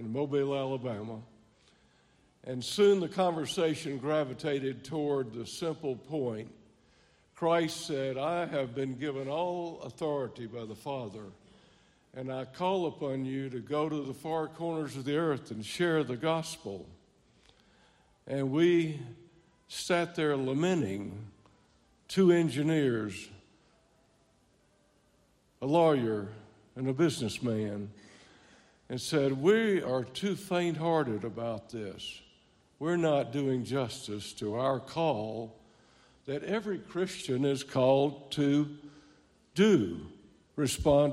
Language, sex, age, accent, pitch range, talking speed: English, male, 60-79, American, 115-160 Hz, 110 wpm